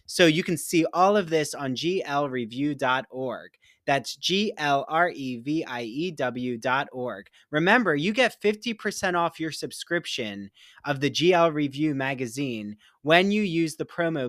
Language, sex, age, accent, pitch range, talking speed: English, male, 20-39, American, 135-180 Hz, 120 wpm